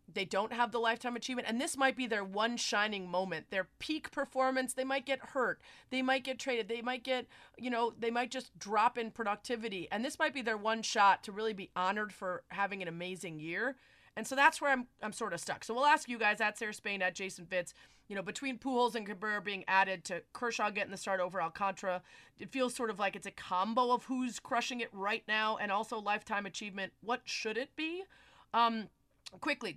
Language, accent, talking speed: English, American, 225 wpm